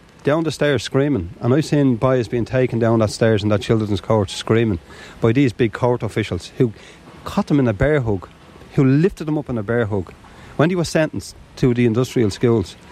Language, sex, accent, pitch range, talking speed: English, male, Irish, 105-140 Hz, 215 wpm